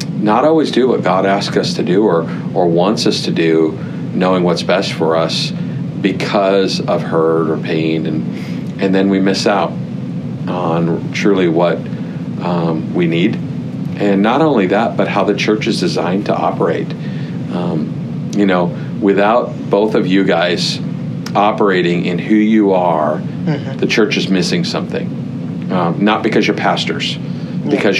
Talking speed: 155 wpm